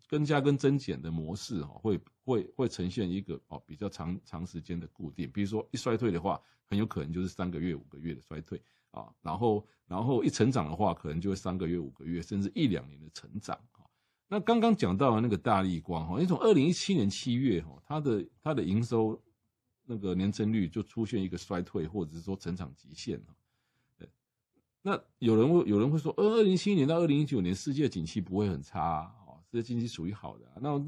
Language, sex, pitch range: Chinese, male, 85-125 Hz